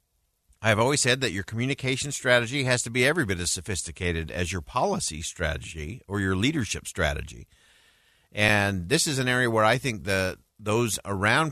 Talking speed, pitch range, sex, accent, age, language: 170 wpm, 90-120 Hz, male, American, 50-69, English